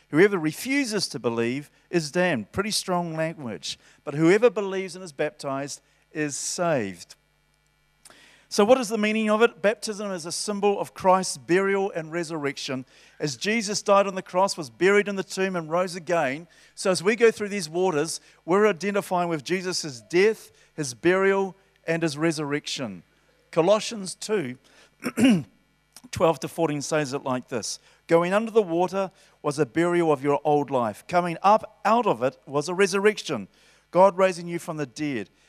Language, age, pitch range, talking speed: English, 50-69, 145-195 Hz, 165 wpm